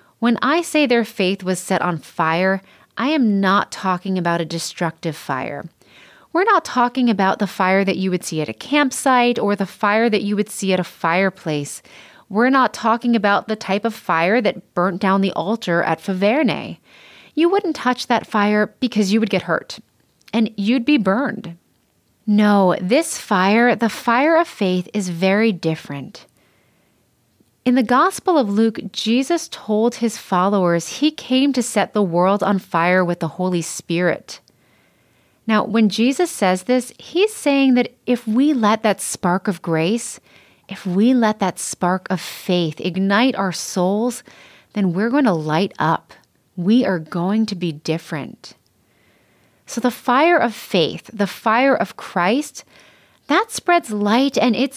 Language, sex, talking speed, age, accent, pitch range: English, female, 165 wpm, 30-49, American, 185-245 Hz